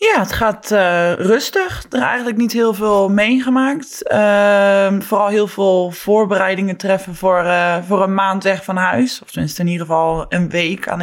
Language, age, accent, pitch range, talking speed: Dutch, 20-39, Dutch, 180-215 Hz, 185 wpm